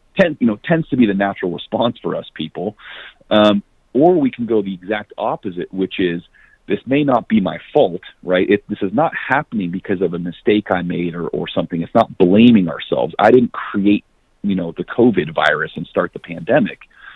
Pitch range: 90-110 Hz